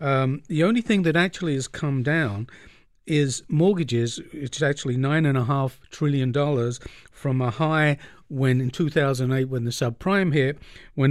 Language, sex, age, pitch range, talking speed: English, male, 50-69, 130-165 Hz, 160 wpm